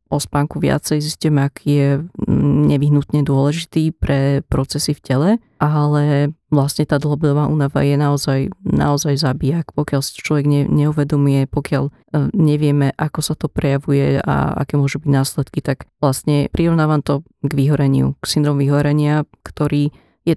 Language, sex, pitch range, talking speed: Slovak, female, 140-155 Hz, 135 wpm